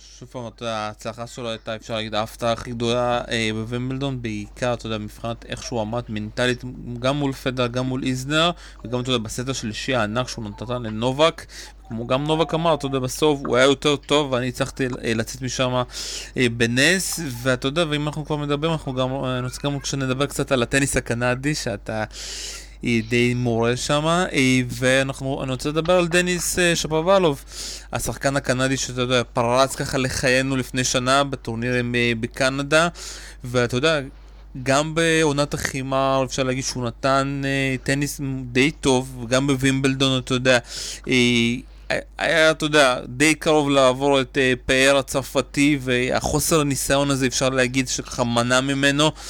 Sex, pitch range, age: male, 125-145 Hz, 20-39